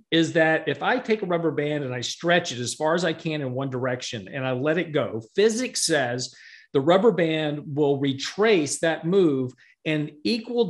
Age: 50-69